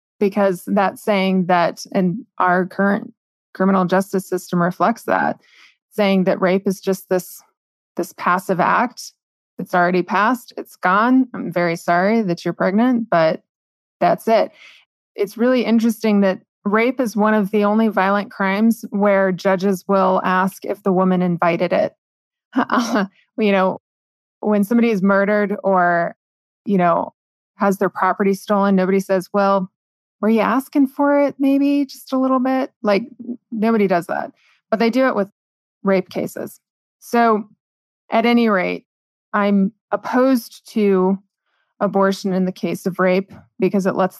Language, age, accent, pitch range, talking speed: English, 20-39, American, 185-220 Hz, 150 wpm